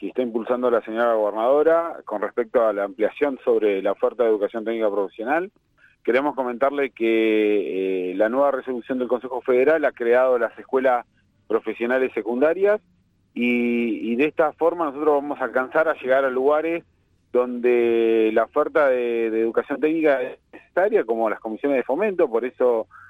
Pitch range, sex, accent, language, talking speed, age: 115-145 Hz, male, Argentinian, Spanish, 165 wpm, 40-59